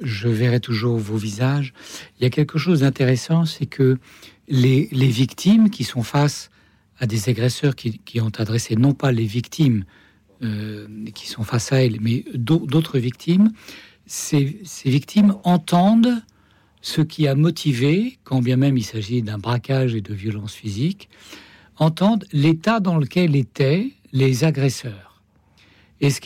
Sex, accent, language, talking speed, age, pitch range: male, French, French, 150 wpm, 60-79, 120-165 Hz